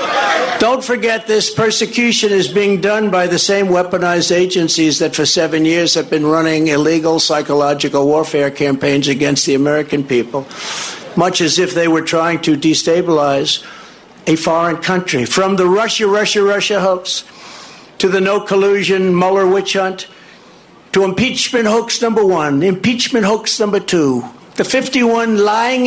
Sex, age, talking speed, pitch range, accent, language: male, 60-79, 145 wpm, 165-205 Hz, American, English